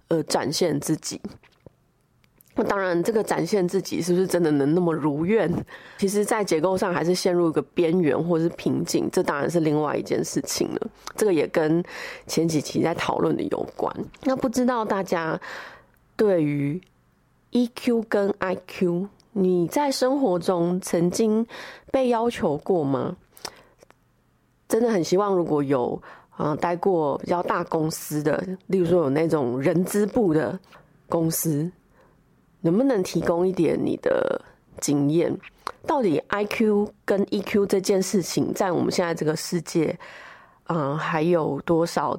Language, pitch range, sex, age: Chinese, 165-210 Hz, female, 20-39